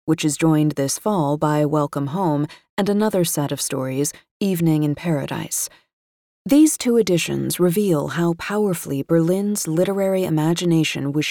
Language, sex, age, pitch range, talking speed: English, female, 30-49, 155-190 Hz, 140 wpm